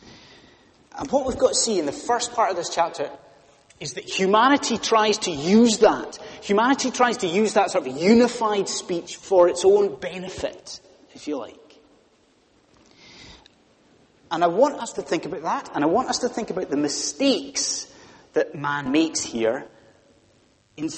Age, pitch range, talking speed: 30-49, 155-245 Hz, 165 wpm